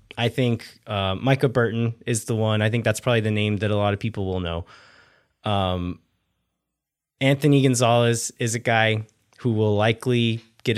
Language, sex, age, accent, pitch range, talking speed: English, male, 20-39, American, 105-120 Hz, 175 wpm